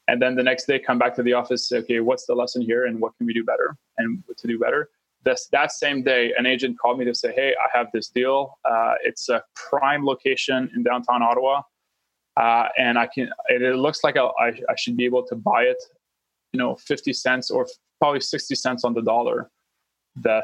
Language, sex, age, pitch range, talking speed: English, male, 20-39, 115-135 Hz, 230 wpm